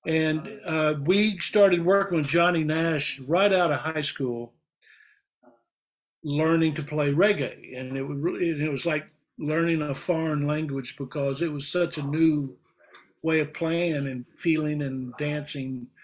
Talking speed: 155 wpm